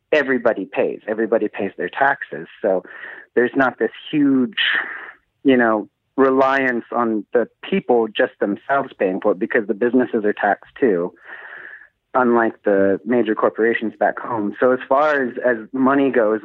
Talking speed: 150 wpm